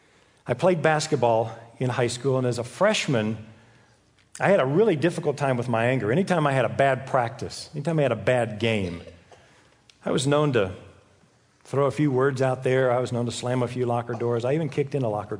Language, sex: English, male